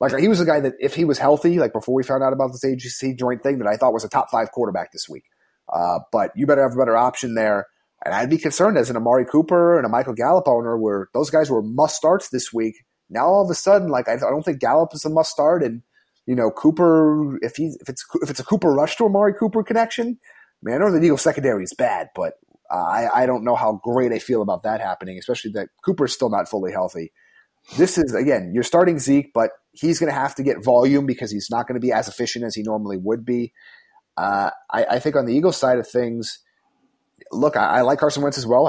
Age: 30-49